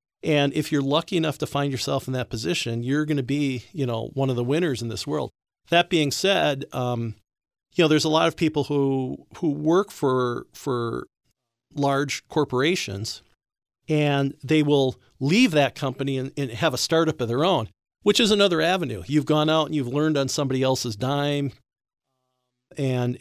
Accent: American